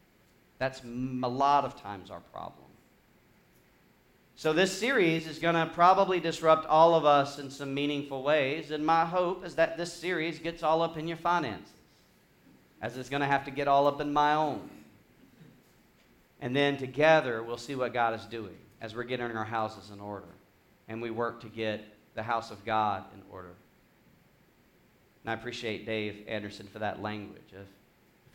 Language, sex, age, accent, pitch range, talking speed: English, male, 40-59, American, 120-175 Hz, 180 wpm